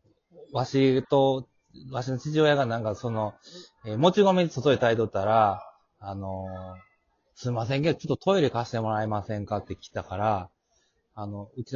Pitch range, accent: 100-150 Hz, native